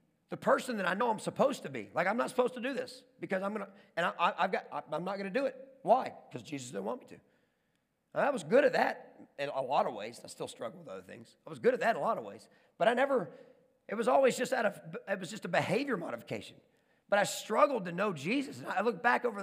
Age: 40-59